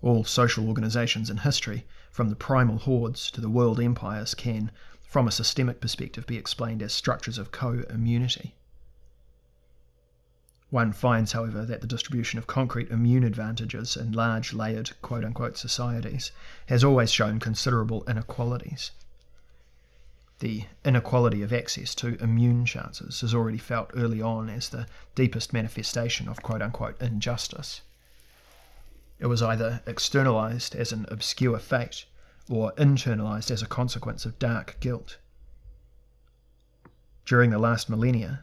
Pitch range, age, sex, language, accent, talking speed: 110-120 Hz, 30-49, male, English, Australian, 130 wpm